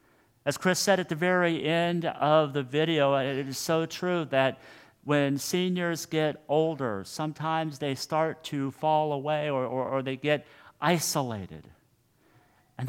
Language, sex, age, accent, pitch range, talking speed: English, male, 50-69, American, 125-150 Hz, 150 wpm